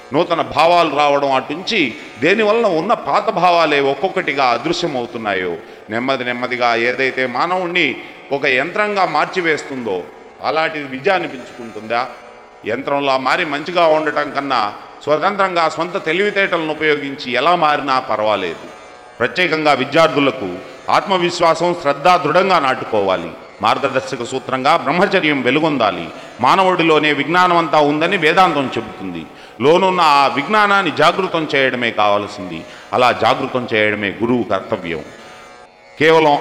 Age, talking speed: 40-59, 100 wpm